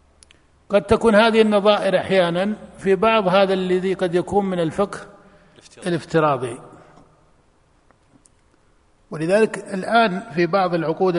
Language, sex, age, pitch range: Arabic, male, 50-69, 155-190 Hz